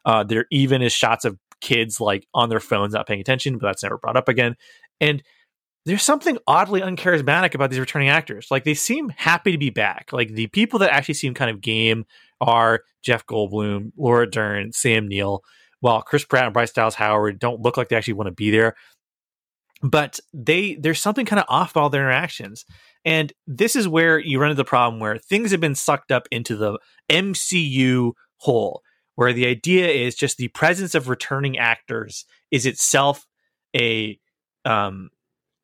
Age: 30-49